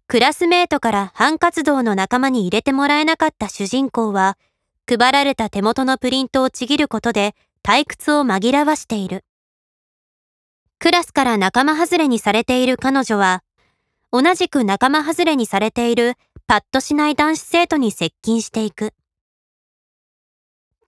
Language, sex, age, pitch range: Japanese, male, 20-39, 215-295 Hz